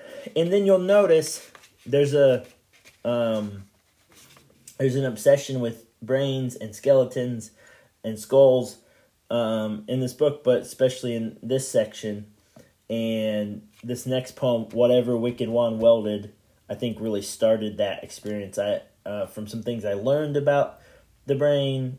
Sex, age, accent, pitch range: male, 20-39, American, 105-130 Hz